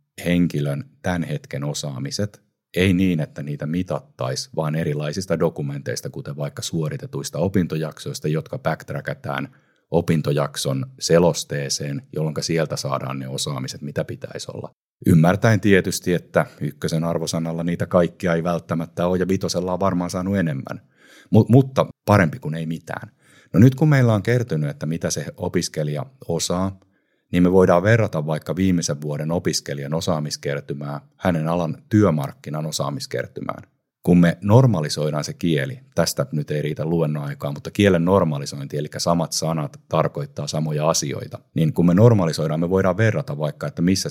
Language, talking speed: Finnish, 135 wpm